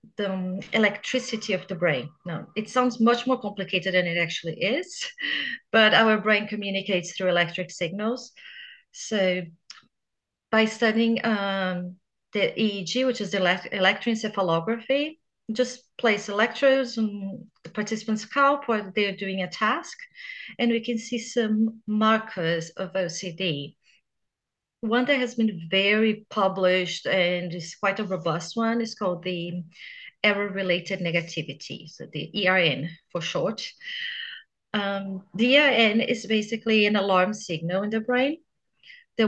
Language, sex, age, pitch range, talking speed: English, female, 30-49, 185-230 Hz, 135 wpm